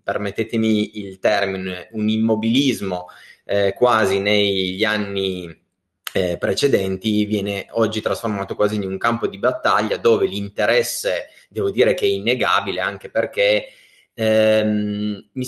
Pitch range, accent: 100-120 Hz, native